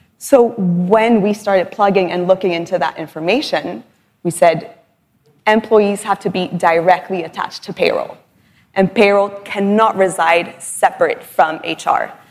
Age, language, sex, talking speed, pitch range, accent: 20-39, English, female, 130 wpm, 170-205 Hz, American